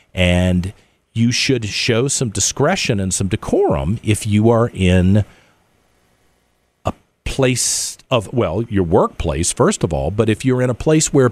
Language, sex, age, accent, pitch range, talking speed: English, male, 50-69, American, 85-125 Hz, 155 wpm